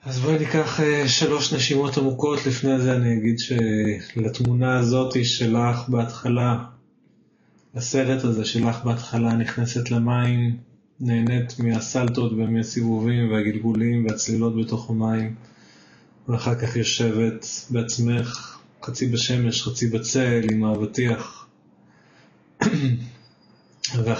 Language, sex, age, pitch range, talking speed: Hebrew, male, 20-39, 110-125 Hz, 95 wpm